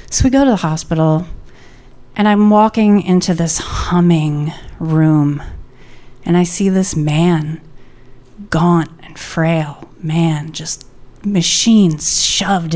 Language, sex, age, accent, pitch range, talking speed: English, female, 30-49, American, 150-220 Hz, 120 wpm